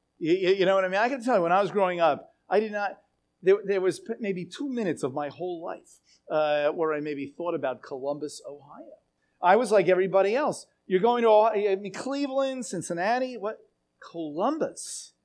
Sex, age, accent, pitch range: male, 50-69, American, 170-245 Hz